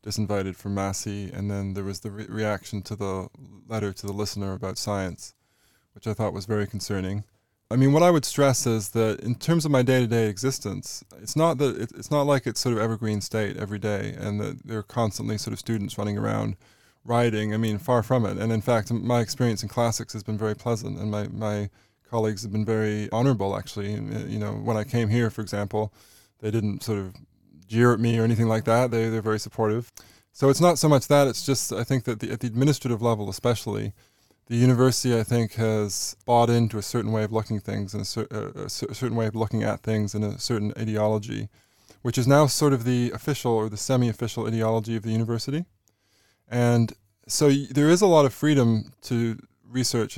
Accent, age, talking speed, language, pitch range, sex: American, 20-39, 220 wpm, English, 105-120 Hz, male